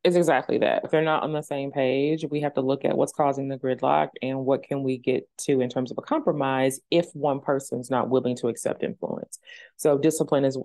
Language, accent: English, American